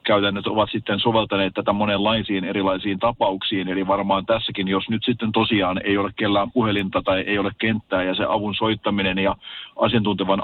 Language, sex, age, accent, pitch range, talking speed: Finnish, male, 40-59, native, 100-110 Hz, 165 wpm